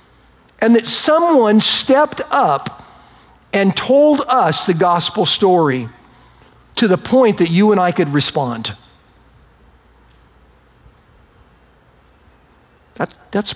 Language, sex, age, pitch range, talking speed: English, male, 50-69, 180-245 Hz, 95 wpm